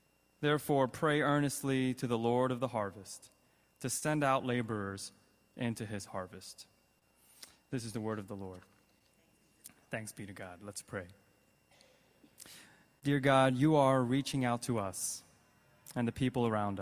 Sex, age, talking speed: male, 20-39, 145 wpm